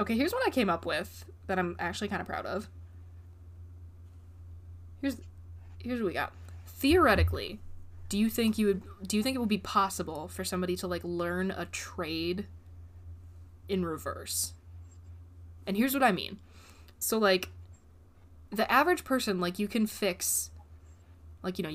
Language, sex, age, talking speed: English, female, 20-39, 160 wpm